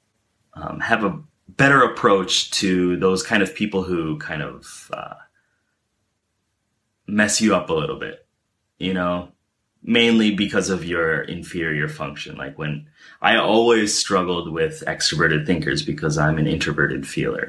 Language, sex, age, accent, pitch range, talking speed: English, male, 30-49, American, 90-110 Hz, 140 wpm